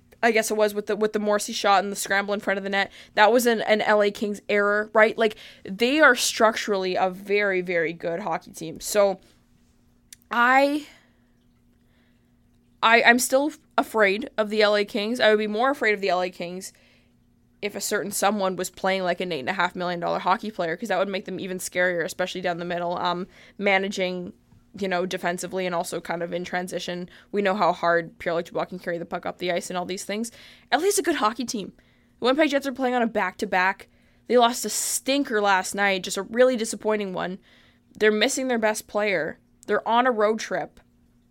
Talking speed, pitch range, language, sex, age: 210 wpm, 185-225 Hz, English, female, 20-39